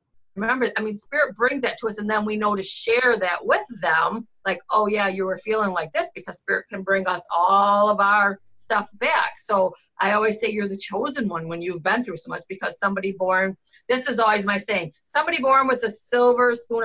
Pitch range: 195-240 Hz